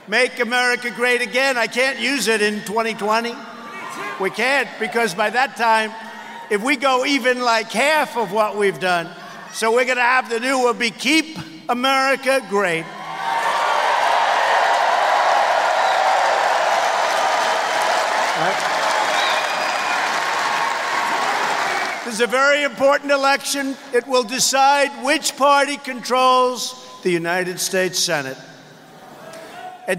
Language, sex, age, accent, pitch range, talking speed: English, male, 50-69, American, 210-255 Hz, 110 wpm